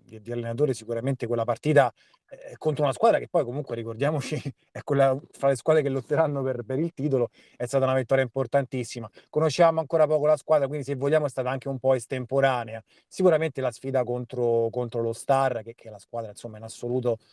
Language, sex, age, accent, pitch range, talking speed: Italian, male, 30-49, native, 125-150 Hz, 200 wpm